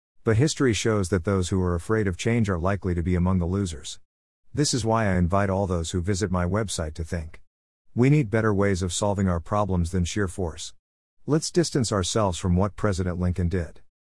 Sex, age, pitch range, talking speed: male, 50-69, 85-110 Hz, 210 wpm